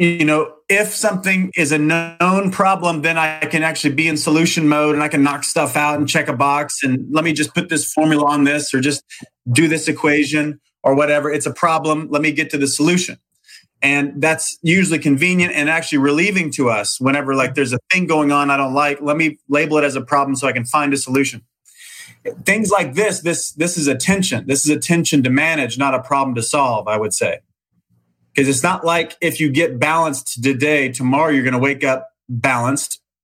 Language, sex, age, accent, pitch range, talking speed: English, male, 30-49, American, 135-160 Hz, 220 wpm